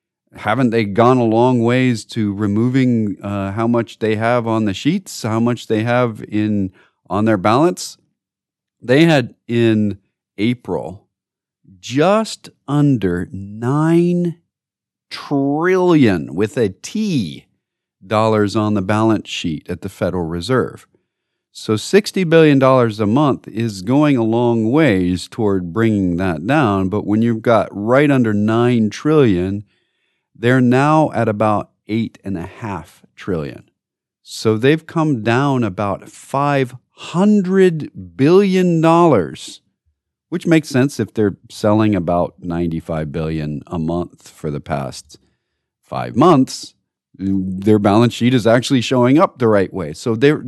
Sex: male